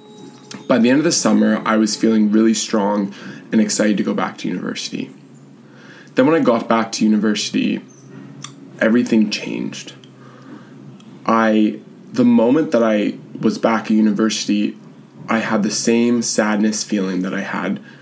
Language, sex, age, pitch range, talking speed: English, male, 20-39, 105-115 Hz, 150 wpm